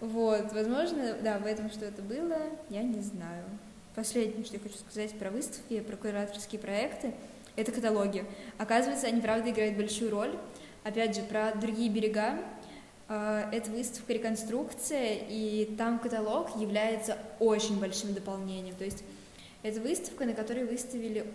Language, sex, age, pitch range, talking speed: Russian, female, 10-29, 210-240 Hz, 145 wpm